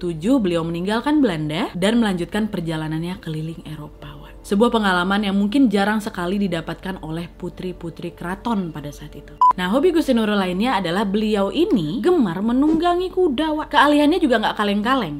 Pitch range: 185-280 Hz